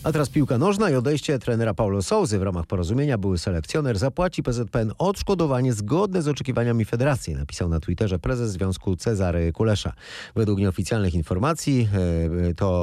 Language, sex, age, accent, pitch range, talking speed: Polish, male, 30-49, native, 90-125 Hz, 150 wpm